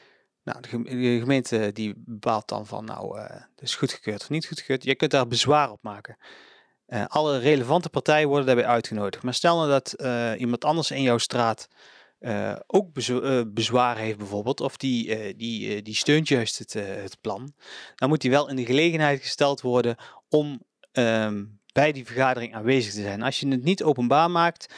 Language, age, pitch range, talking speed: Dutch, 30-49, 110-135 Hz, 190 wpm